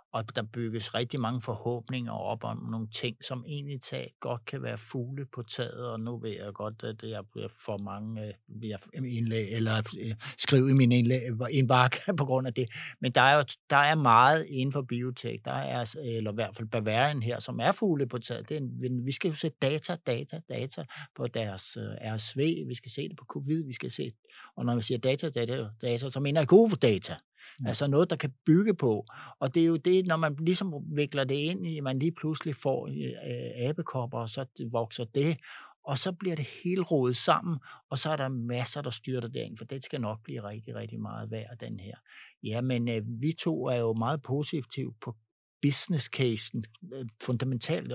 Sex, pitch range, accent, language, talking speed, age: male, 115-145 Hz, native, Danish, 205 wpm, 60-79